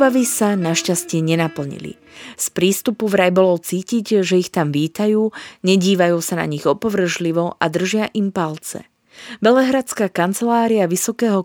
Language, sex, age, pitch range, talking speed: Slovak, female, 20-39, 170-215 Hz, 130 wpm